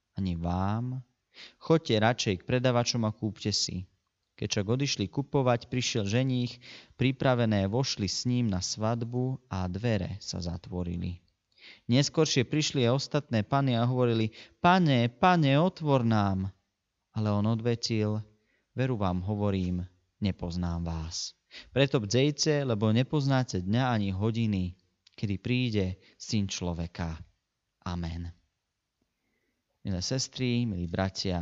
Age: 30-49